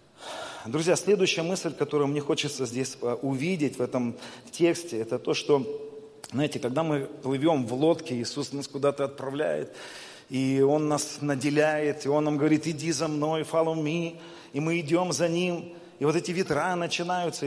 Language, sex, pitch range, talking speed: Russian, male, 150-180 Hz, 160 wpm